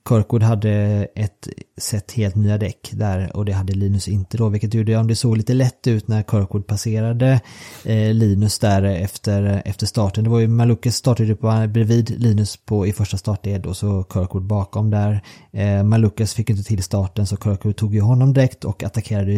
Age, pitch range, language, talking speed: 30-49, 100-120 Hz, Swedish, 195 wpm